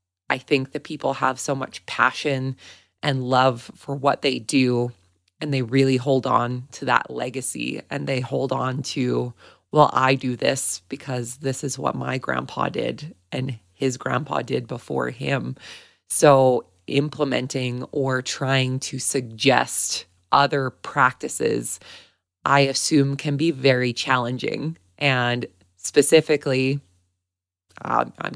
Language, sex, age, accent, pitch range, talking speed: English, female, 20-39, American, 100-135 Hz, 130 wpm